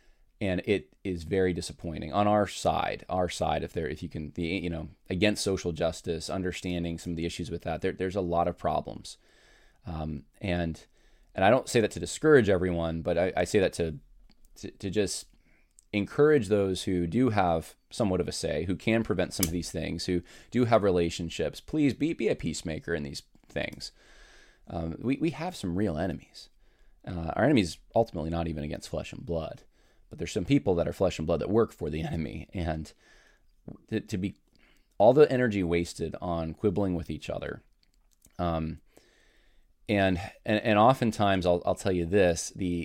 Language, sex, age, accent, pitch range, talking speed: English, male, 20-39, American, 85-100 Hz, 190 wpm